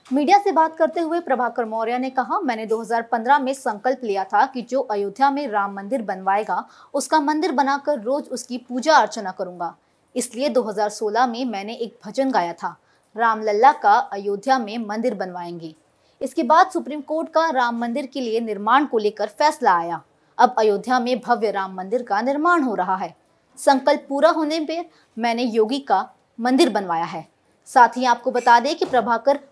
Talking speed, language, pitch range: 120 wpm, Hindi, 215-285 Hz